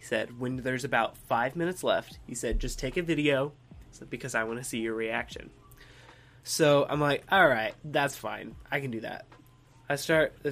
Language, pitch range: English, 125-160 Hz